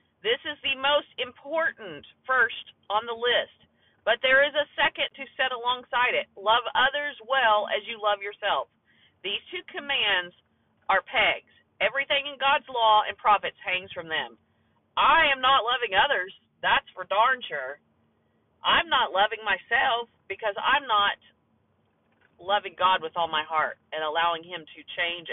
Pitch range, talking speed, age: 170-250 Hz, 155 wpm, 40-59